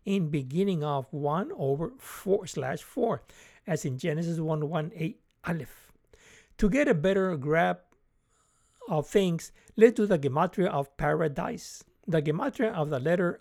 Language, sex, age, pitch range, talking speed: English, male, 60-79, 155-200 Hz, 150 wpm